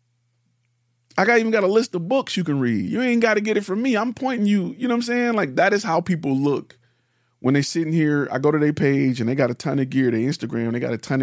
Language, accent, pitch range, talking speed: English, American, 120-165 Hz, 295 wpm